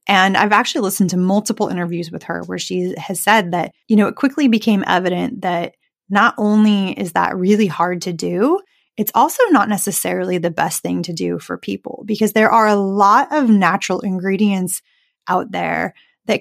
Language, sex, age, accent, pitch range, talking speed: English, female, 20-39, American, 185-245 Hz, 185 wpm